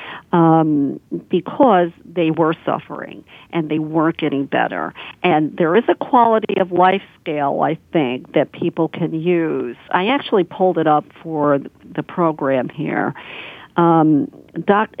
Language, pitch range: English, 150-180 Hz